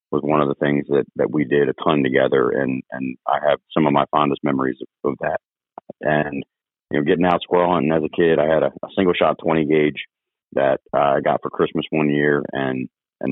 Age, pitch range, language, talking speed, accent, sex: 40-59, 75-85 Hz, English, 230 wpm, American, male